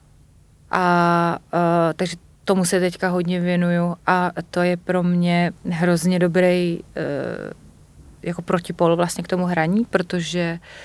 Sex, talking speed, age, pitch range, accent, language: female, 105 wpm, 30-49, 175-190 Hz, native, Czech